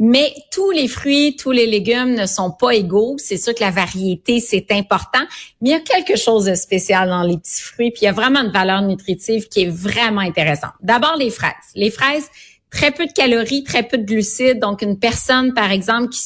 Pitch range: 195-245 Hz